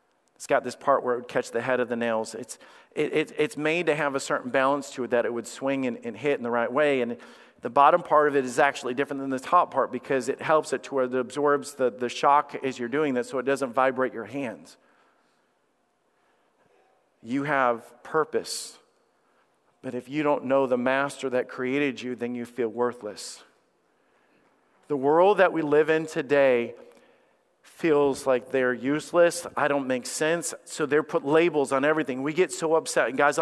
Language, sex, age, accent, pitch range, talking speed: English, male, 40-59, American, 135-180 Hz, 205 wpm